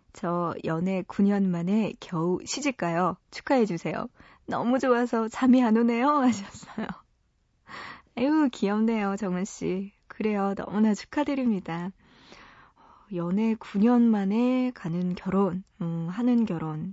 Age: 20-39